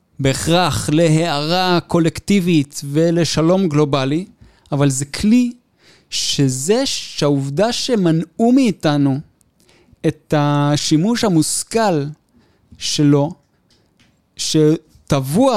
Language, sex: Hebrew, male